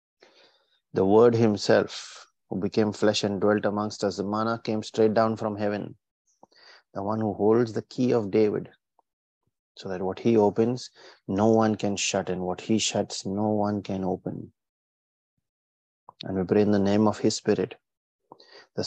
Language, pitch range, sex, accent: English, 95-110 Hz, male, Indian